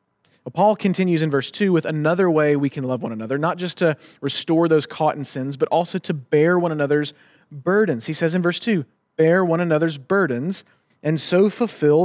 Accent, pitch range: American, 150-200 Hz